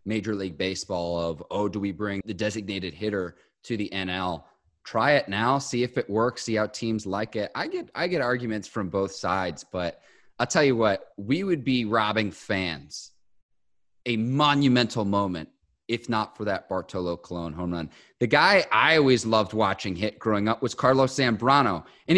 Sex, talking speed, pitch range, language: male, 185 wpm, 110-160 Hz, English